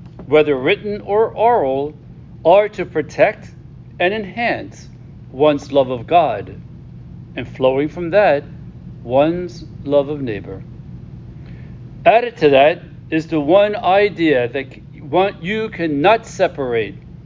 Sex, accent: male, American